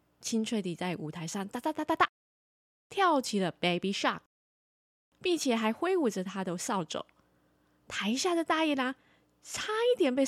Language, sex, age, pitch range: Chinese, female, 20-39, 175-285 Hz